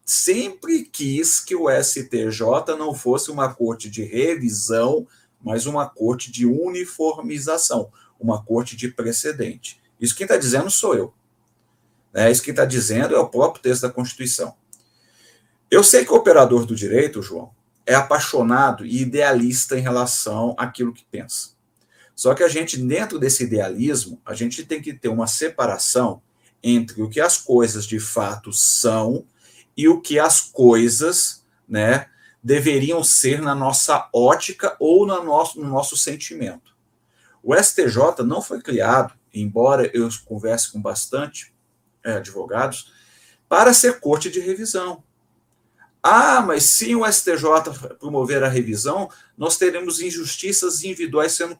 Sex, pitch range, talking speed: male, 115-160 Hz, 140 wpm